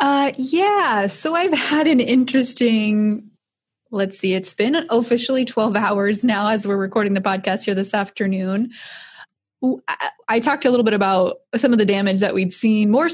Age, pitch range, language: 20-39, 200-255 Hz, English